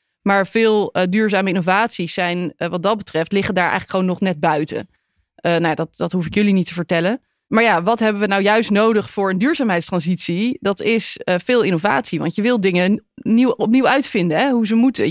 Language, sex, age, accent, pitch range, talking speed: Dutch, female, 20-39, Dutch, 180-230 Hz, 205 wpm